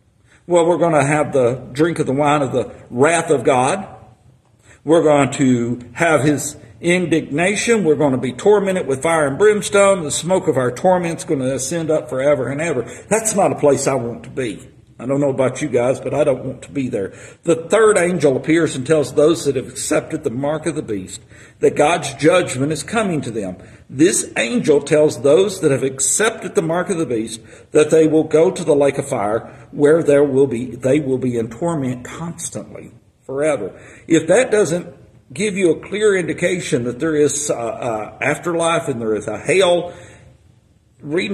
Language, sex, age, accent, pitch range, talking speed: English, male, 50-69, American, 120-160 Hz, 200 wpm